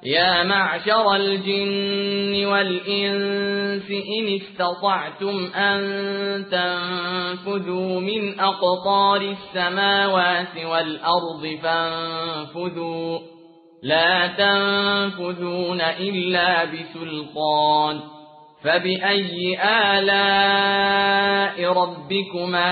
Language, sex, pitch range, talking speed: English, male, 165-195 Hz, 55 wpm